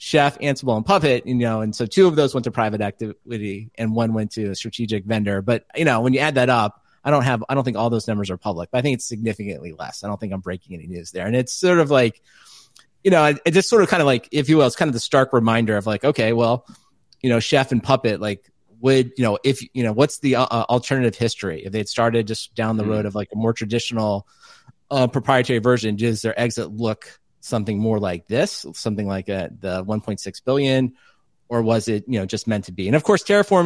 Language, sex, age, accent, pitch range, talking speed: English, male, 30-49, American, 105-125 Hz, 255 wpm